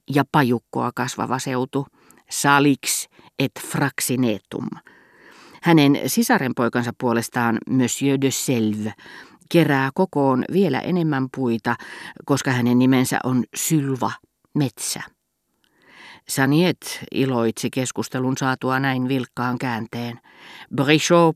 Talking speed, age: 90 wpm, 40-59